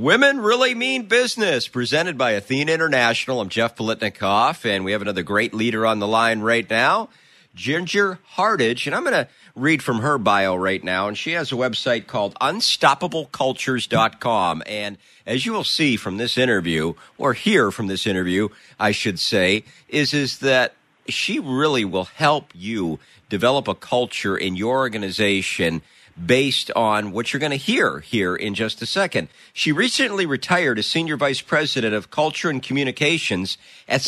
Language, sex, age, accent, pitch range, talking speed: English, male, 50-69, American, 105-145 Hz, 165 wpm